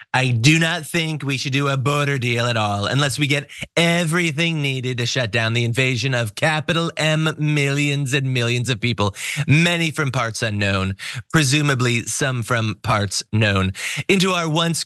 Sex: male